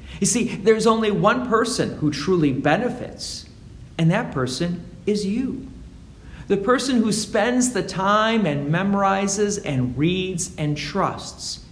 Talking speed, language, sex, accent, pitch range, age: 135 wpm, English, male, American, 135-220 Hz, 50-69